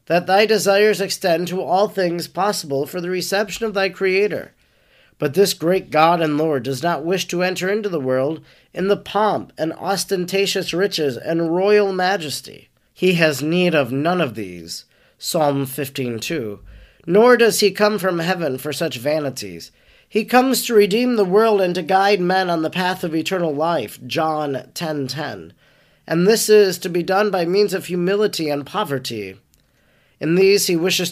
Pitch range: 150-200 Hz